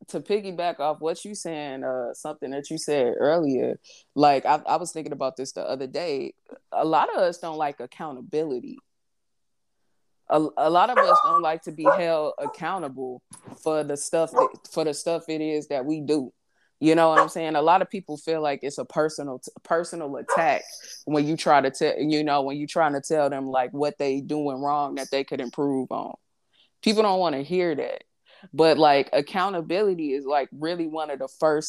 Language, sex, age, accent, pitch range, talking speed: English, female, 20-39, American, 145-165 Hz, 200 wpm